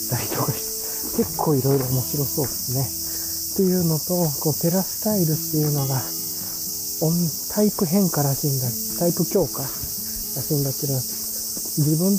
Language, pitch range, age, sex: Japanese, 120-170 Hz, 40-59, male